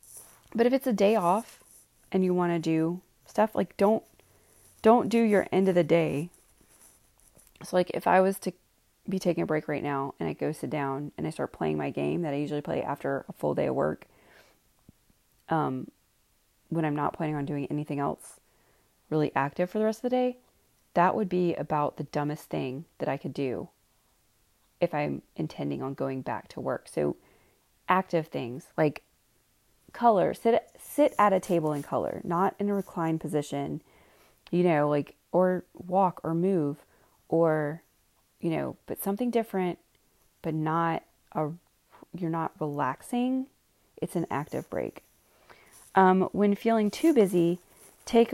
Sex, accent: female, American